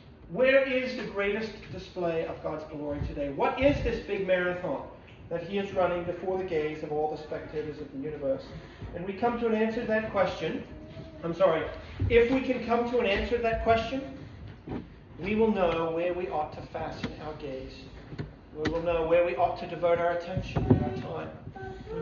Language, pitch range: English, 160-235 Hz